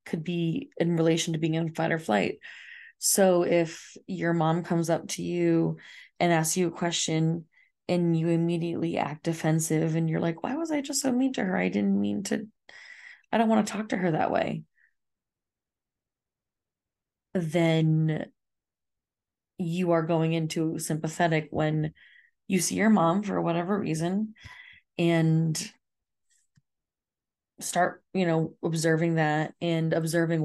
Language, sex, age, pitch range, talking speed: English, female, 20-39, 160-190 Hz, 145 wpm